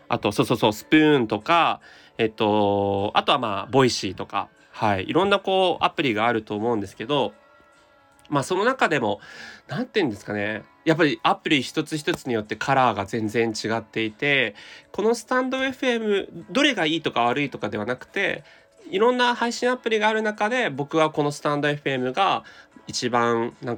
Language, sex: Japanese, male